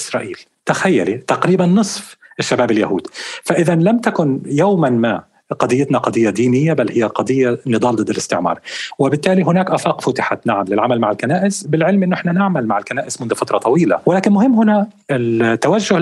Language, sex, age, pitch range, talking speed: Arabic, male, 40-59, 125-185 Hz, 155 wpm